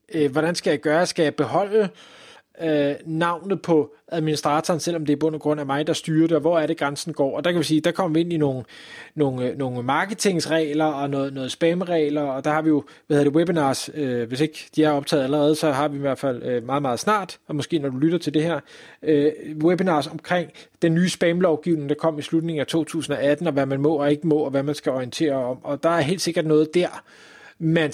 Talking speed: 245 wpm